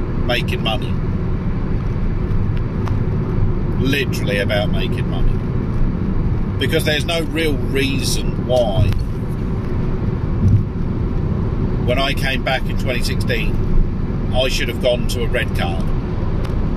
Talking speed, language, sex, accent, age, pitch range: 95 wpm, English, male, British, 50-69, 95-125 Hz